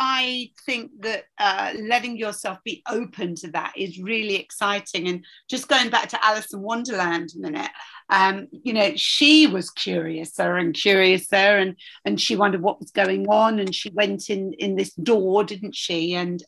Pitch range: 190-230 Hz